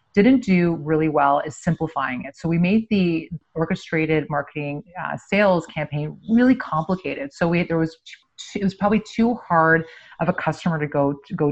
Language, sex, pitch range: English, female, 150-180 Hz